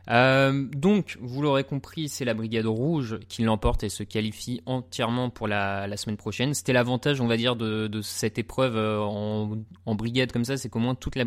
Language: French